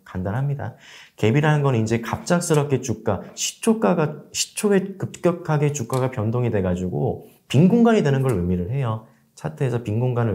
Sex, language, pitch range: male, Korean, 105-180 Hz